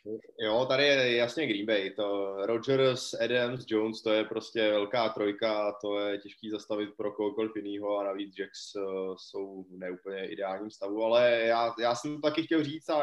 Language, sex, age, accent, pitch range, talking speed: Czech, male, 20-39, native, 110-130 Hz, 180 wpm